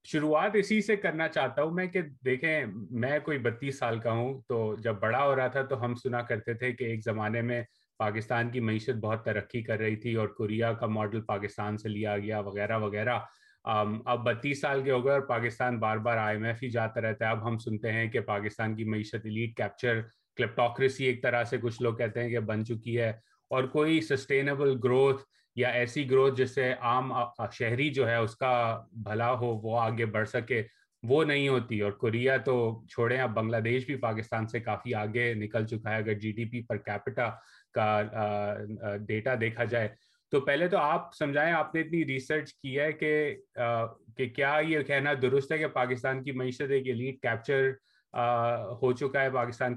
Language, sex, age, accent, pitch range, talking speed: English, male, 30-49, Indian, 115-135 Hz, 165 wpm